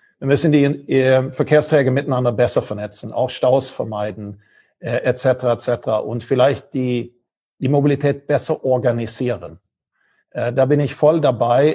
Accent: German